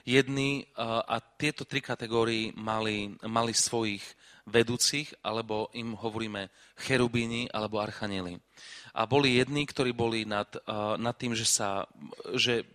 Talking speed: 120 wpm